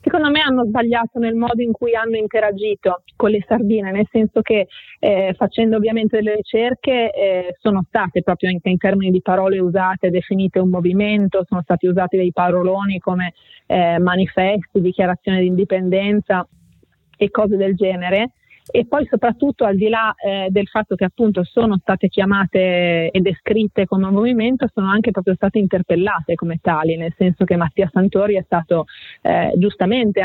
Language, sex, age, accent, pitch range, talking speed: Italian, female, 30-49, native, 190-220 Hz, 170 wpm